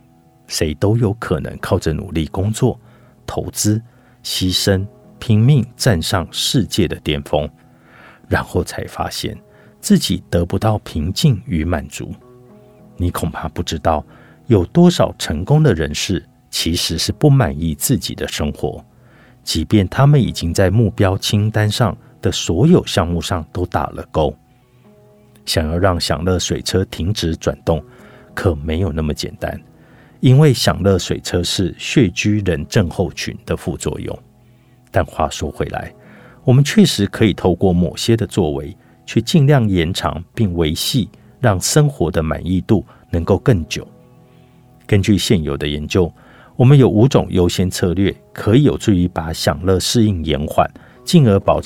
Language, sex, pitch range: Chinese, male, 85-120 Hz